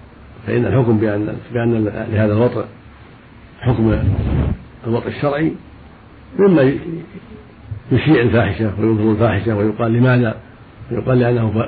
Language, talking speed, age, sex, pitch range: Arabic, 90 wpm, 50-69, male, 105-120 Hz